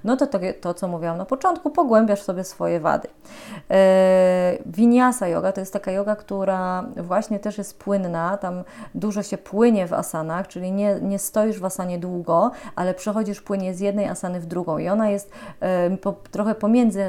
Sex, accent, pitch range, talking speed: female, native, 180-205 Hz, 175 wpm